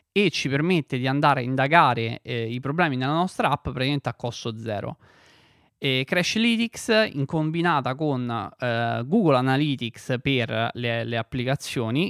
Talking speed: 145 wpm